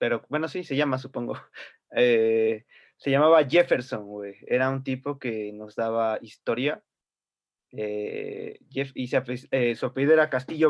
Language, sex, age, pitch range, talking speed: Spanish, male, 20-39, 115-145 Hz, 155 wpm